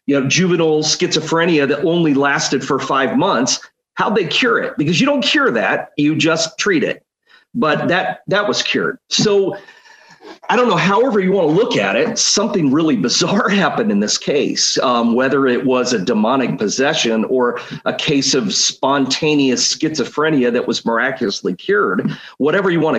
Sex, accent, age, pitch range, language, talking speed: male, American, 40-59, 130-200 Hz, English, 170 wpm